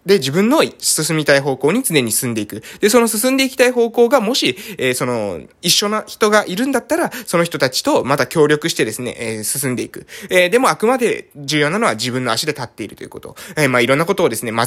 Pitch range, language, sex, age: 120-190 Hz, Japanese, male, 20-39